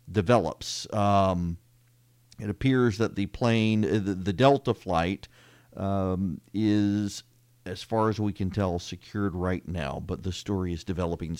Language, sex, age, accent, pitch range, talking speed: English, male, 40-59, American, 90-120 Hz, 140 wpm